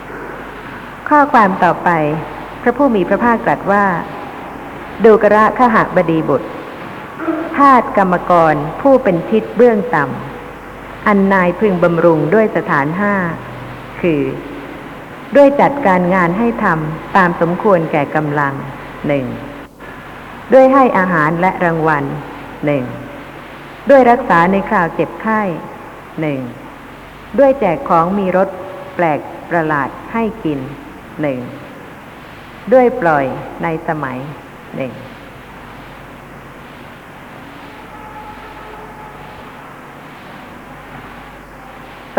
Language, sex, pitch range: Thai, female, 170-230 Hz